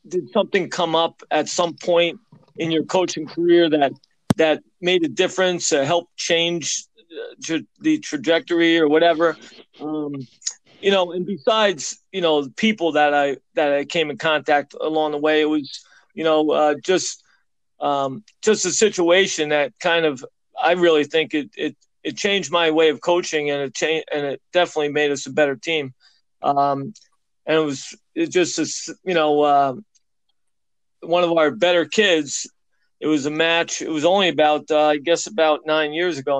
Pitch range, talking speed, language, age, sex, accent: 150-175 Hz, 175 wpm, English, 40-59, male, American